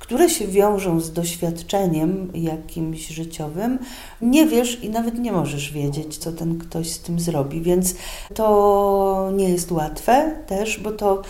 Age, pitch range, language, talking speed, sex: 40-59, 160-200 Hz, Polish, 150 wpm, female